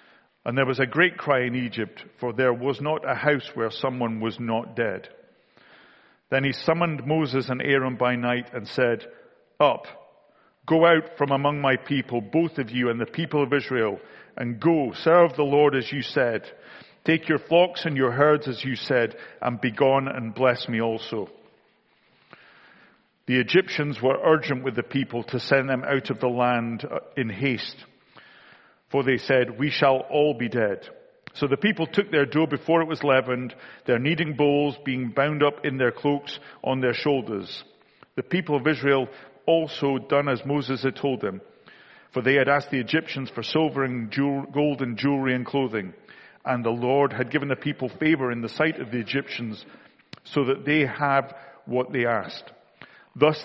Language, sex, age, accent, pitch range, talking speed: English, male, 50-69, British, 125-150 Hz, 180 wpm